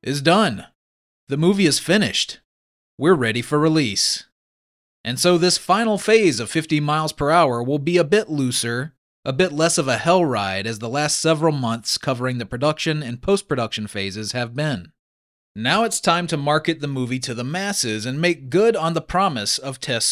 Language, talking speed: English, 190 wpm